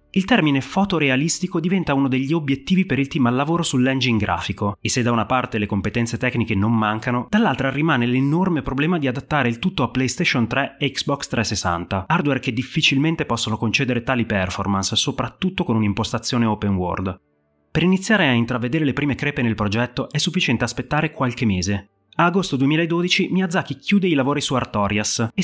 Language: Italian